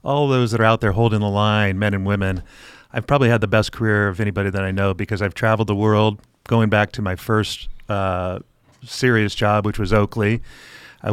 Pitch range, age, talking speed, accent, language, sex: 100-110 Hz, 40-59, 215 wpm, American, English, male